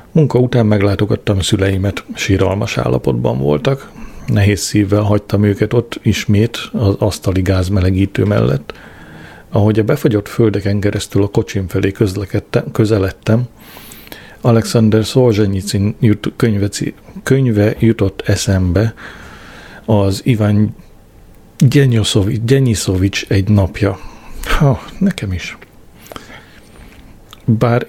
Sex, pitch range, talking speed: male, 100-115 Hz, 90 wpm